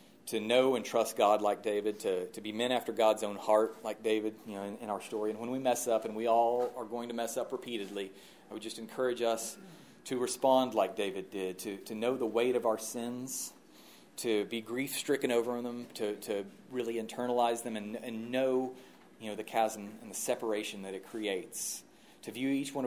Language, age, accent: English, 40-59, American